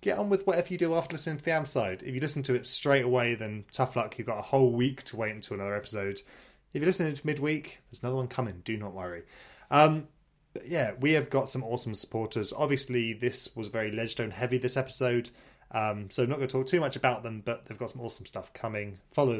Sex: male